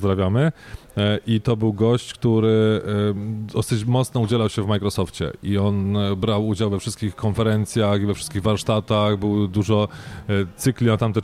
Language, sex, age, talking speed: Polish, male, 20-39, 150 wpm